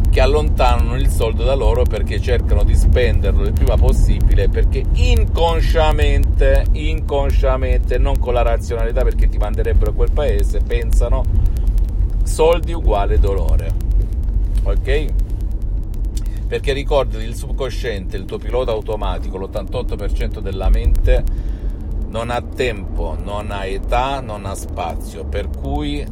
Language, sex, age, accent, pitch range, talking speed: Italian, male, 50-69, native, 75-100 Hz, 120 wpm